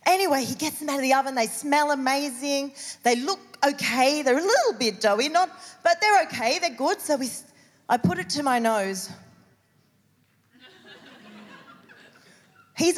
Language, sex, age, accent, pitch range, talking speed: English, female, 30-49, Australian, 245-350 Hz, 155 wpm